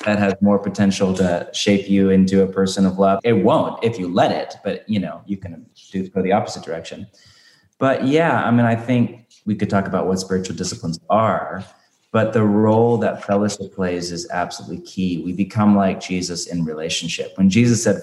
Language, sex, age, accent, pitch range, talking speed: English, male, 30-49, American, 95-100 Hz, 195 wpm